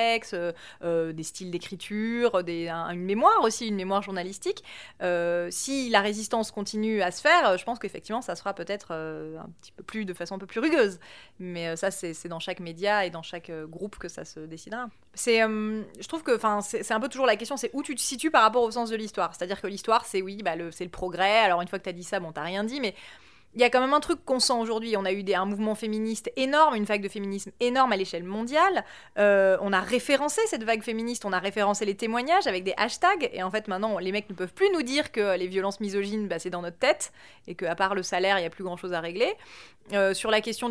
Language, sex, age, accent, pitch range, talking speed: French, female, 30-49, French, 185-225 Hz, 260 wpm